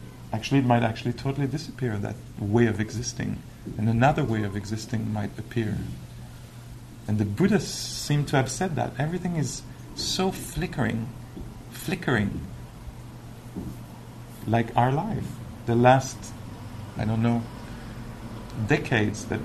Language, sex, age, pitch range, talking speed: English, male, 50-69, 115-130 Hz, 125 wpm